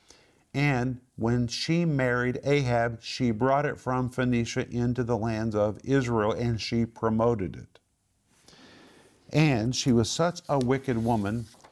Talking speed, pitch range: 135 wpm, 110-140 Hz